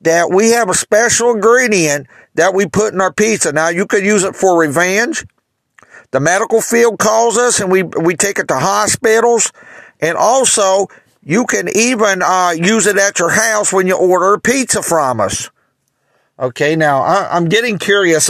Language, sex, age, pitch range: English, male, 50-69, 160-210 Hz